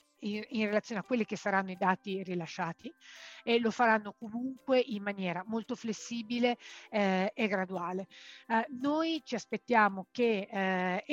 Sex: female